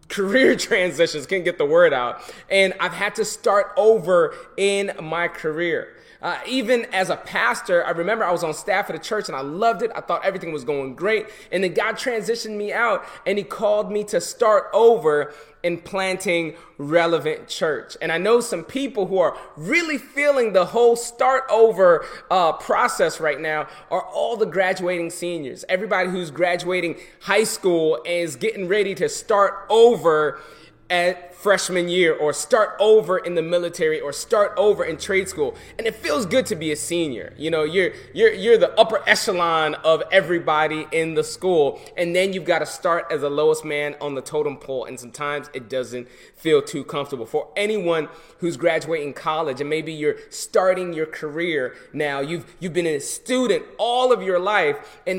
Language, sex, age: English, male, 20-39